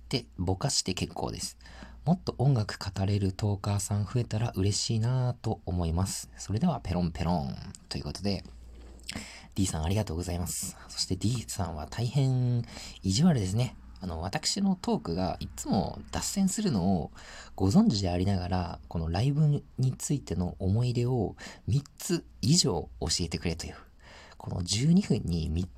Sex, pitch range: male, 85-120 Hz